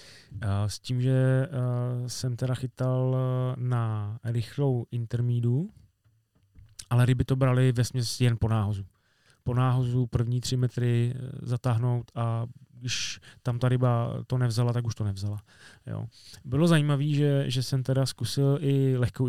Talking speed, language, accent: 135 wpm, Czech, native